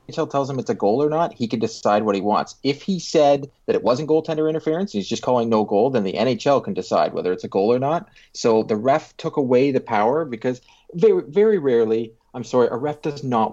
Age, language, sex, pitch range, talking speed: 30-49, English, male, 115-160 Hz, 245 wpm